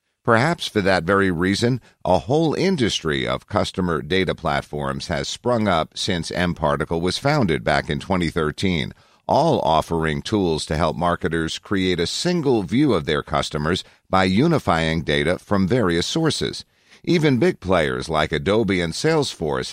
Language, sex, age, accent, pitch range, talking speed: English, male, 50-69, American, 80-115 Hz, 145 wpm